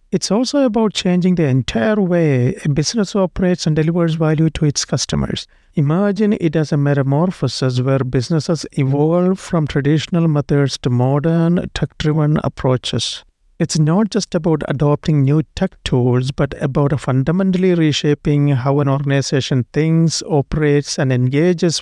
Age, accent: 50-69, Indian